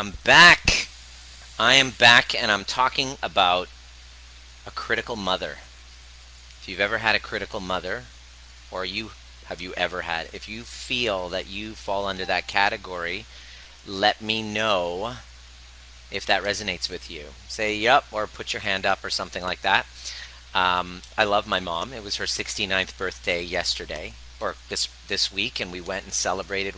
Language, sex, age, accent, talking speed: English, male, 40-59, American, 165 wpm